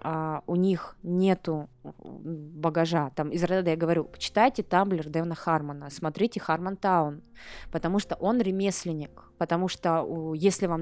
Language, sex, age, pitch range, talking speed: Russian, female, 20-39, 155-185 Hz, 130 wpm